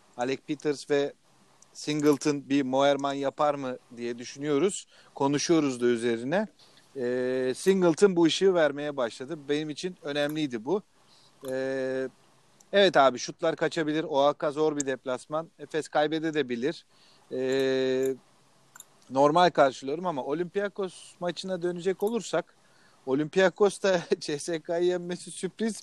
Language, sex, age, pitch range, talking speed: Turkish, male, 40-59, 140-190 Hz, 105 wpm